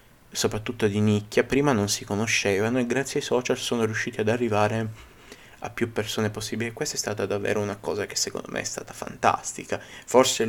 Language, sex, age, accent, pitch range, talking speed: Italian, male, 20-39, native, 100-115 Hz, 190 wpm